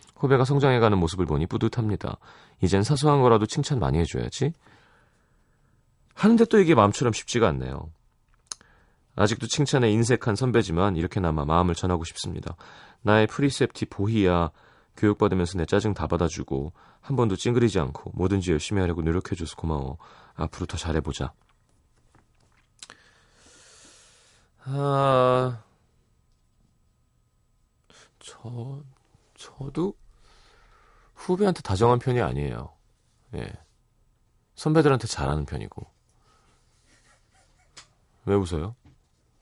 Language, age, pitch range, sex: Korean, 30-49, 90-130 Hz, male